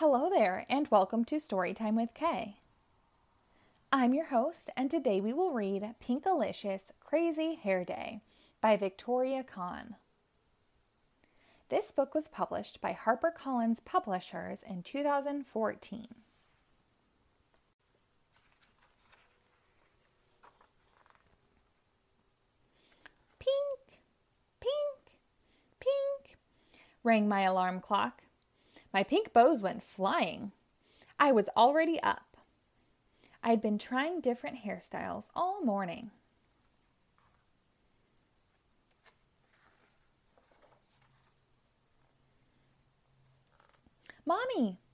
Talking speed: 75 wpm